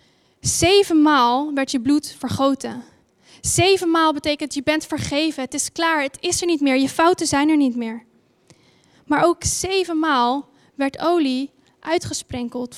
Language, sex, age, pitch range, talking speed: Dutch, female, 10-29, 265-320 Hz, 140 wpm